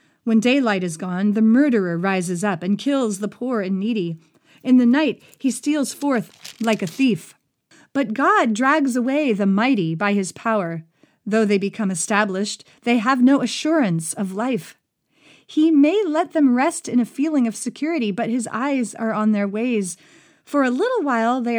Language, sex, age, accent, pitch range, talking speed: English, female, 40-59, American, 190-265 Hz, 180 wpm